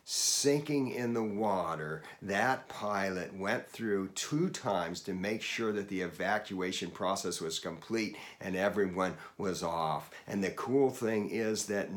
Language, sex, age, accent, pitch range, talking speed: English, male, 50-69, American, 105-135 Hz, 145 wpm